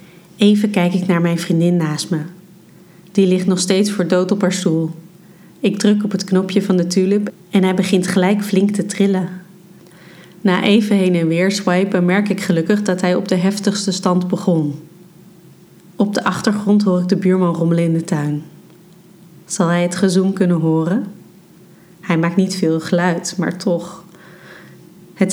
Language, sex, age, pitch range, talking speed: Dutch, female, 30-49, 175-195 Hz, 175 wpm